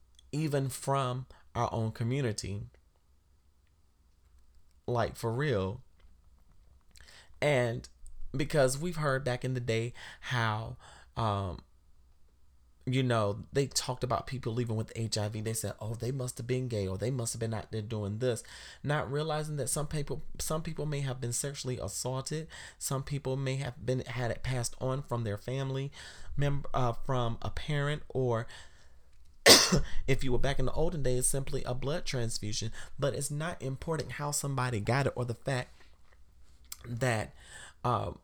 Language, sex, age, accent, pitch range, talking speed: English, male, 30-49, American, 105-135 Hz, 155 wpm